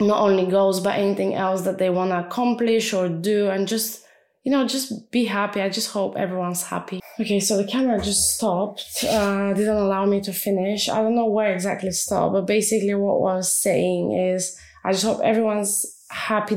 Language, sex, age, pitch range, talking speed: English, female, 20-39, 170-200 Hz, 200 wpm